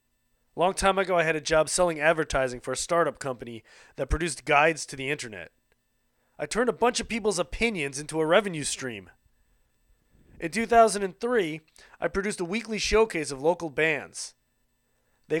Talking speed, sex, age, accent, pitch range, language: 160 wpm, male, 30-49, American, 130-170 Hz, English